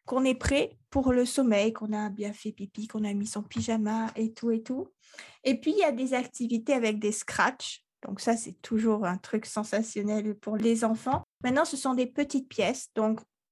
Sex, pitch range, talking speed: female, 220-270 Hz, 210 wpm